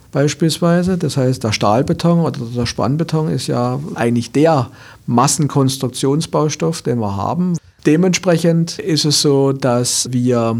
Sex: male